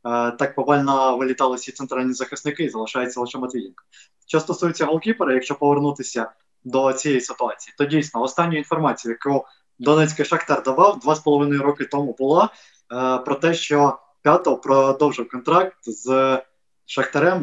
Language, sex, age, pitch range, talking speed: Ukrainian, male, 20-39, 130-150 Hz, 140 wpm